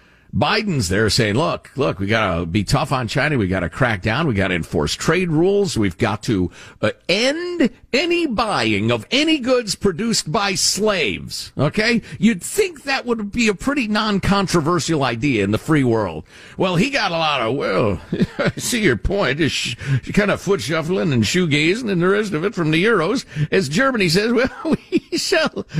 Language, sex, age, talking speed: English, male, 50-69, 185 wpm